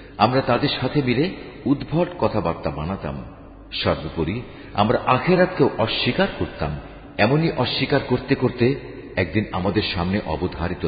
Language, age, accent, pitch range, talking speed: Bengali, 50-69, native, 90-140 Hz, 110 wpm